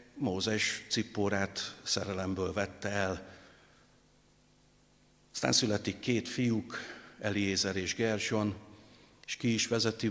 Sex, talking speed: male, 95 wpm